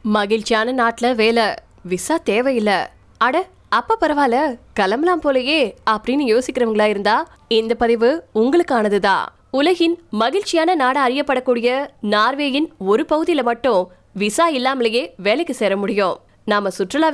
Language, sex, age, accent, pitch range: Tamil, female, 20-39, native, 220-280 Hz